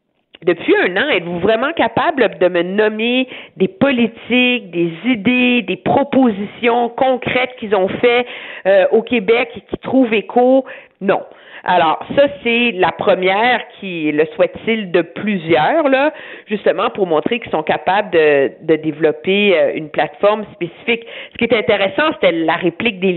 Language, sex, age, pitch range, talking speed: French, female, 50-69, 170-230 Hz, 155 wpm